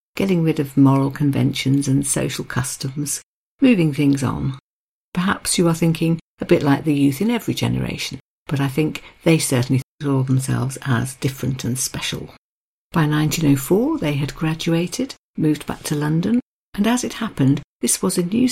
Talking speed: 165 wpm